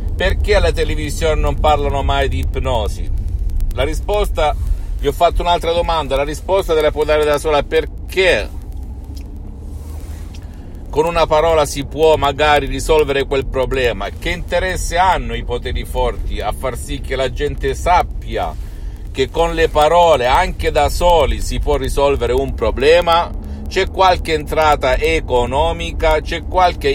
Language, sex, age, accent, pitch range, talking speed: Italian, male, 50-69, native, 115-150 Hz, 145 wpm